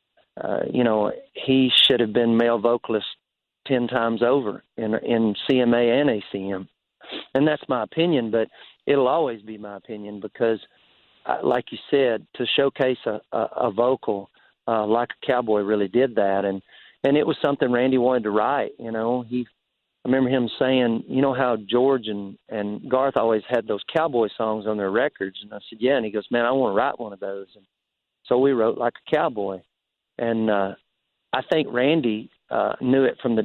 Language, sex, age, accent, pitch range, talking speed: English, male, 40-59, American, 110-130 Hz, 190 wpm